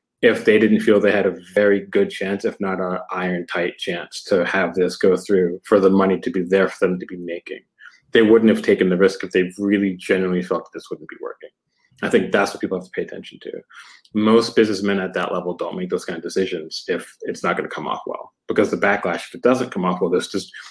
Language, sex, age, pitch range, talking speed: English, male, 30-49, 95-120 Hz, 245 wpm